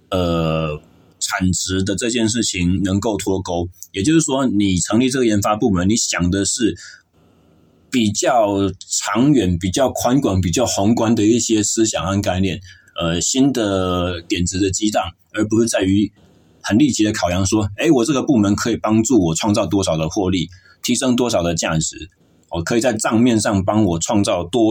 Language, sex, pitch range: Chinese, male, 90-115 Hz